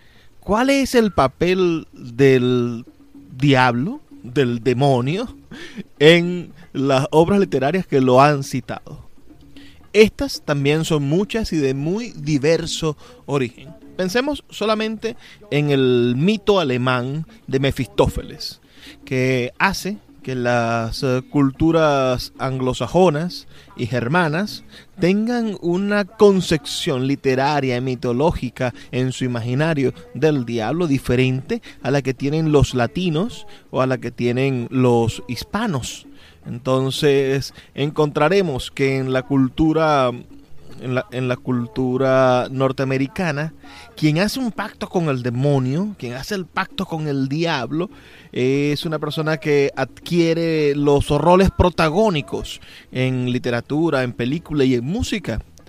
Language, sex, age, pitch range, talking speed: Spanish, male, 30-49, 125-165 Hz, 115 wpm